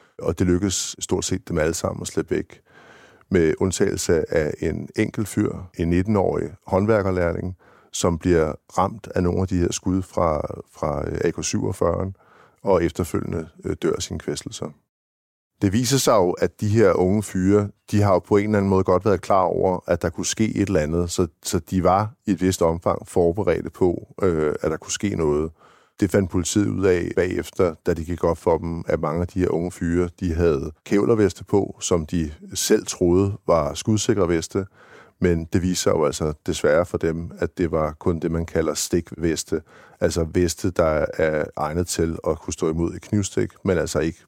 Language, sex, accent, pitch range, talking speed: Danish, male, native, 85-100 Hz, 190 wpm